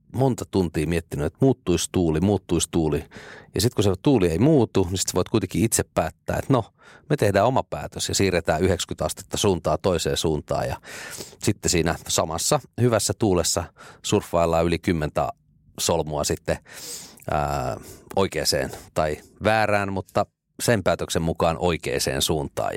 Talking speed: 140 wpm